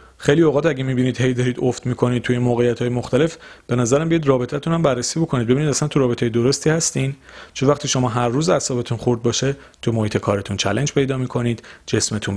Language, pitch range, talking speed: Persian, 110-155 Hz, 185 wpm